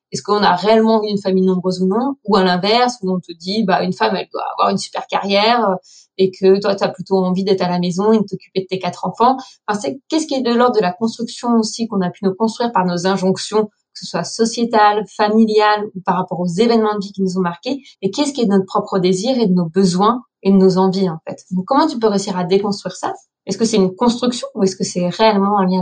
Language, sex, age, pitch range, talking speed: French, female, 20-39, 190-225 Hz, 270 wpm